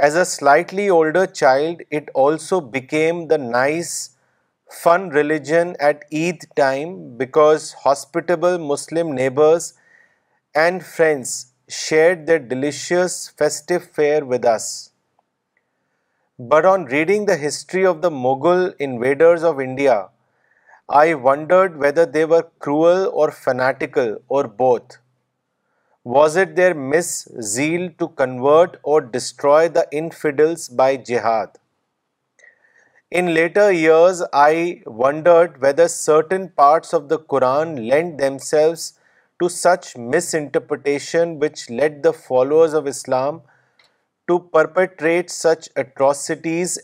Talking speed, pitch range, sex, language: 110 wpm, 140-175 Hz, male, Urdu